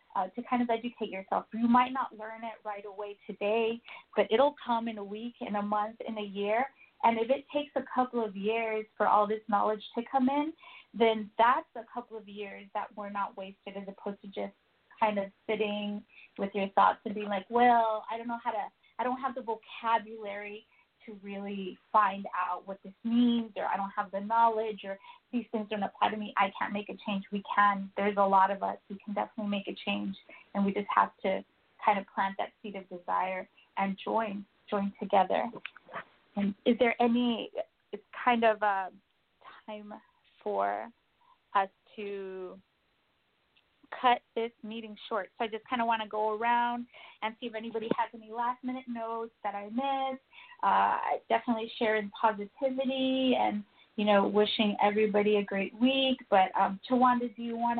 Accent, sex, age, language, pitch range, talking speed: American, female, 20-39, English, 205-240 Hz, 190 wpm